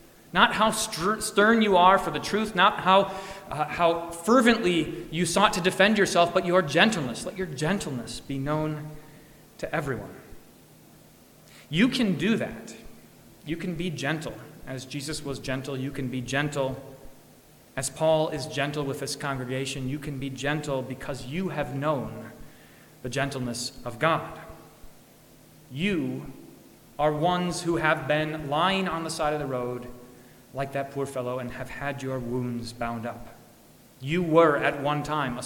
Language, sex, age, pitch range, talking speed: English, male, 30-49, 135-175 Hz, 160 wpm